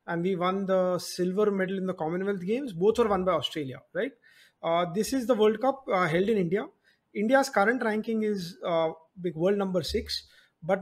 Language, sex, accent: English, male, Indian